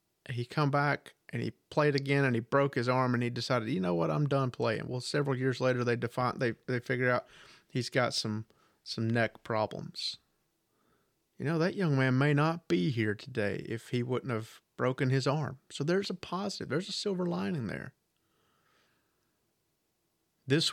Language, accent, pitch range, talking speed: English, American, 120-150 Hz, 185 wpm